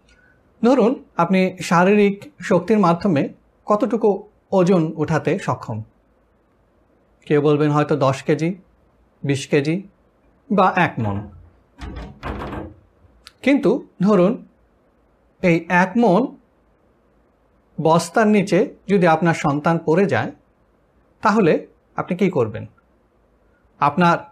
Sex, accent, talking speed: male, native, 90 wpm